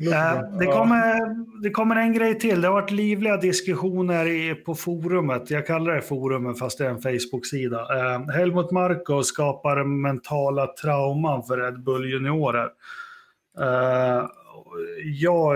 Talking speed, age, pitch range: 125 wpm, 30-49, 125-175 Hz